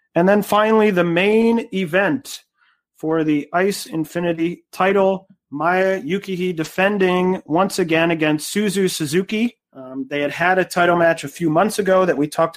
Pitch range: 145-185 Hz